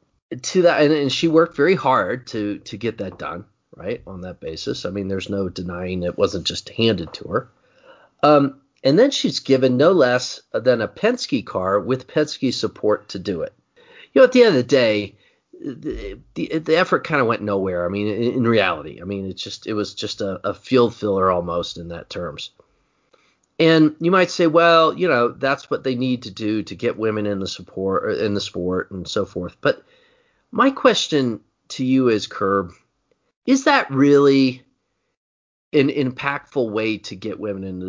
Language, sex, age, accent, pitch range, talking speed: English, male, 40-59, American, 100-145 Hz, 195 wpm